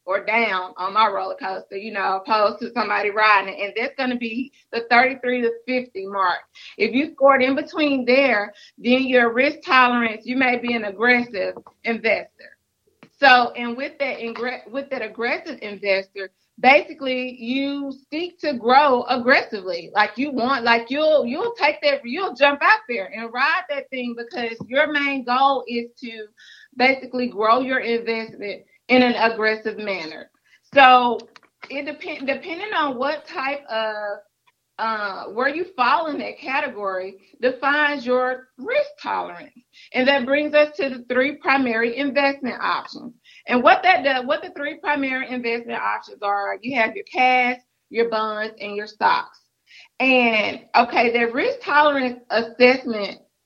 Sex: female